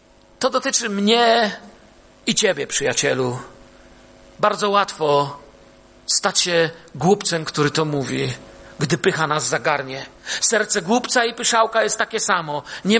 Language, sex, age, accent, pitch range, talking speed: Polish, male, 40-59, native, 170-220 Hz, 120 wpm